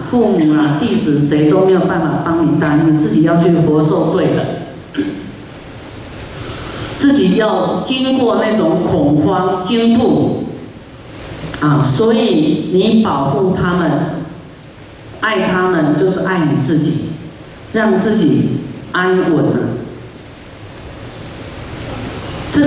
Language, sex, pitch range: Chinese, female, 155-220 Hz